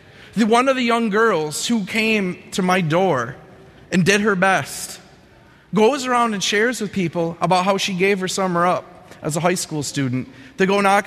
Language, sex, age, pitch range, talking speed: English, male, 30-49, 145-190 Hz, 190 wpm